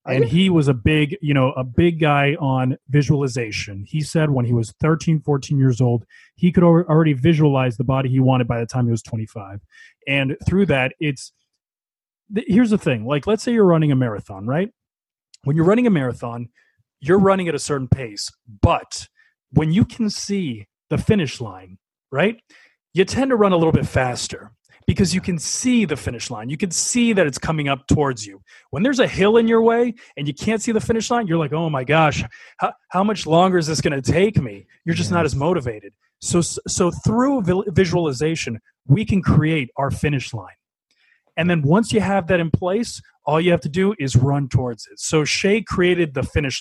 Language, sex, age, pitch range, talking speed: English, male, 30-49, 130-190 Hz, 205 wpm